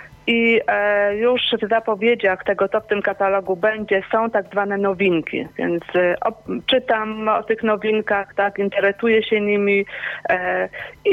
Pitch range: 185-220 Hz